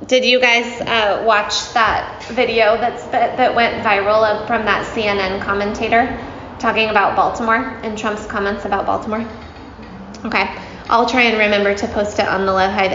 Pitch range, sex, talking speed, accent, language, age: 195-235 Hz, female, 165 wpm, American, English, 20-39